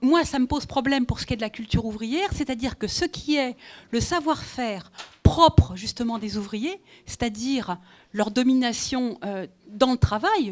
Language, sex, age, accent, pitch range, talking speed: French, female, 40-59, French, 220-310 Hz, 170 wpm